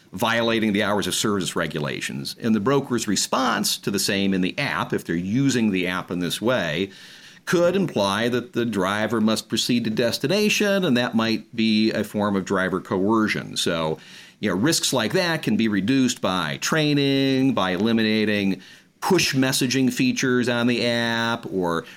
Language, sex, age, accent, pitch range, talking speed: English, male, 50-69, American, 95-130 Hz, 170 wpm